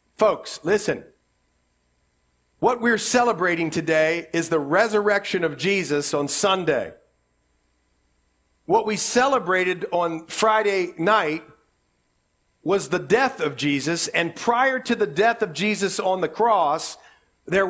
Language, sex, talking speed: English, male, 120 wpm